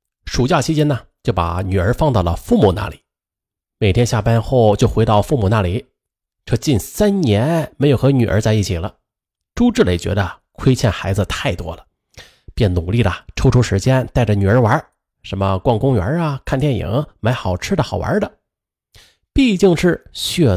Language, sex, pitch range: Chinese, male, 95-155 Hz